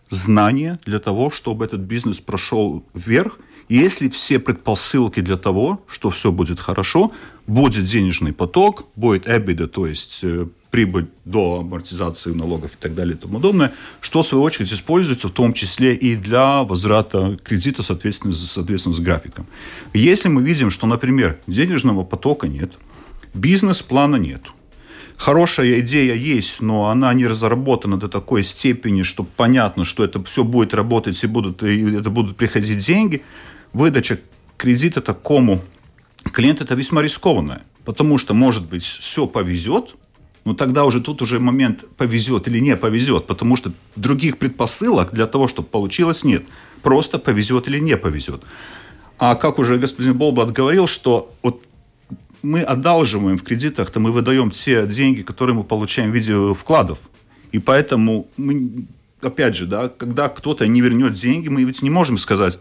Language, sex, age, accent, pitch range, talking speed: Russian, male, 40-59, native, 100-130 Hz, 155 wpm